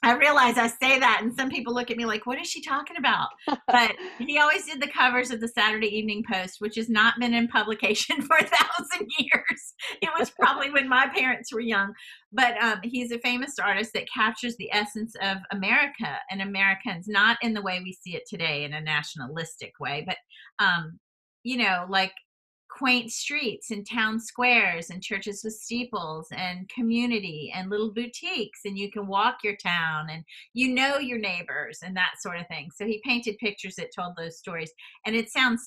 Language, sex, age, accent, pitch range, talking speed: English, female, 40-59, American, 185-245 Hz, 200 wpm